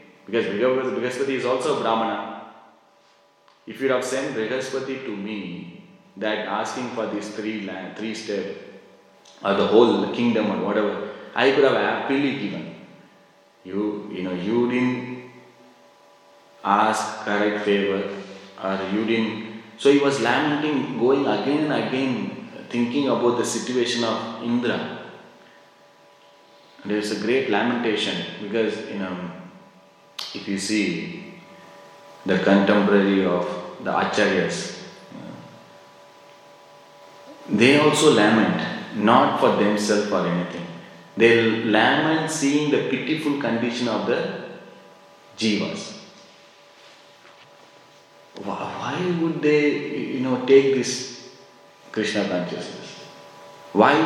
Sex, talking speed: male, 115 wpm